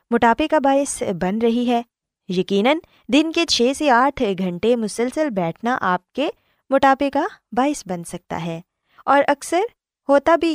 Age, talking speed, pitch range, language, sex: 20-39, 155 wpm, 185-275 Hz, Urdu, female